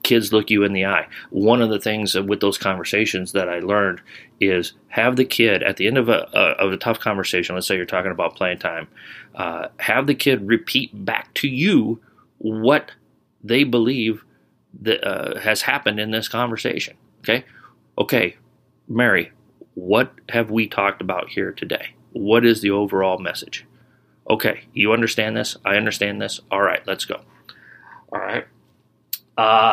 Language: English